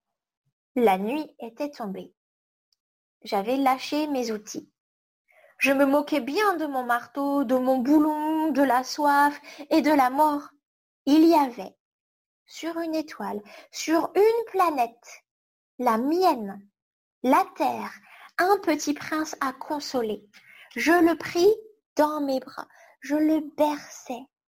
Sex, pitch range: female, 255-335 Hz